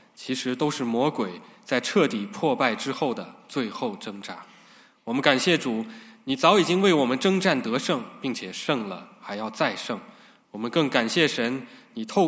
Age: 20-39